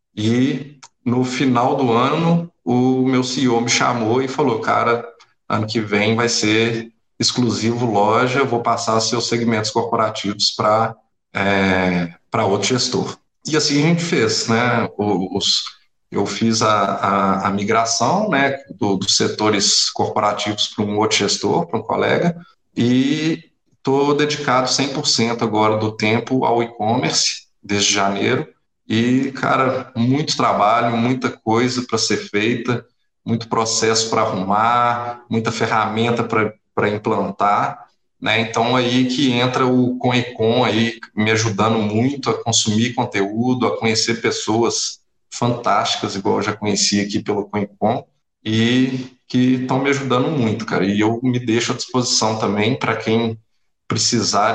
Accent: Brazilian